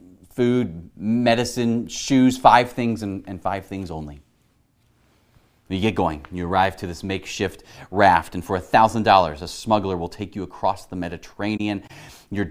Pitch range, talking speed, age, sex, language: 95-120 Hz, 150 wpm, 30-49, male, English